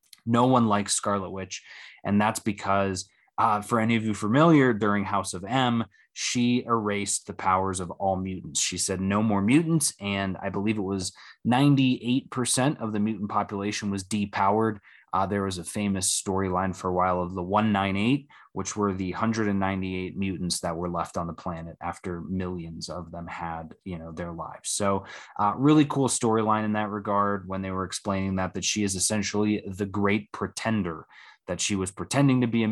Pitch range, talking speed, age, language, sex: 95-110 Hz, 185 wpm, 20-39, English, male